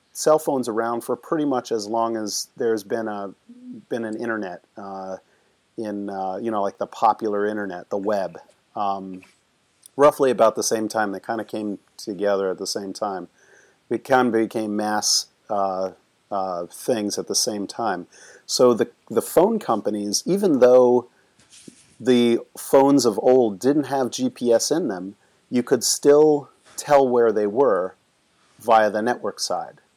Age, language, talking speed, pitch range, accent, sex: 40-59, English, 160 wpm, 100-120 Hz, American, male